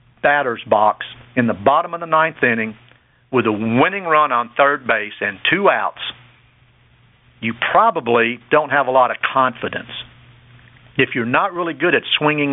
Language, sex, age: English, male, 50-69